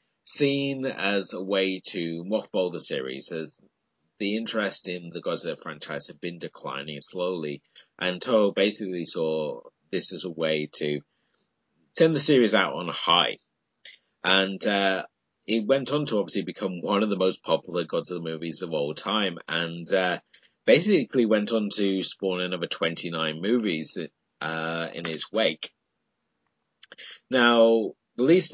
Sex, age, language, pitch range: male, 30-49, English, 80-105 Hz